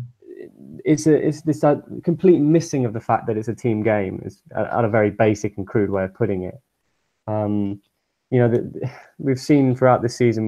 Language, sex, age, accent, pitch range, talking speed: English, male, 20-39, British, 110-140 Hz, 195 wpm